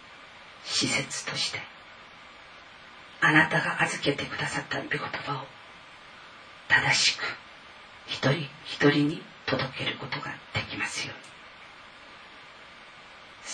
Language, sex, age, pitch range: Japanese, female, 40-59, 135-150 Hz